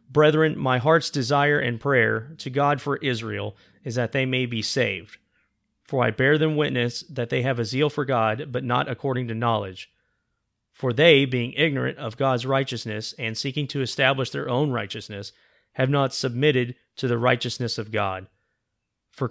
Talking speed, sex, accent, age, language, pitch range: 175 wpm, male, American, 30-49, English, 115-140 Hz